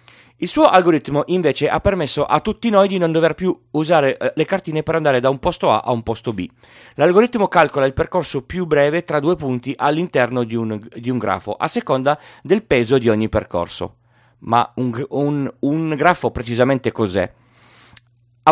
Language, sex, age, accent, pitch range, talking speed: Italian, male, 30-49, native, 120-165 Hz, 175 wpm